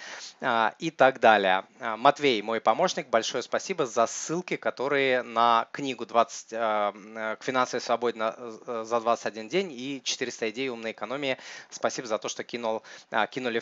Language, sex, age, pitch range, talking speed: Russian, male, 20-39, 115-150 Hz, 130 wpm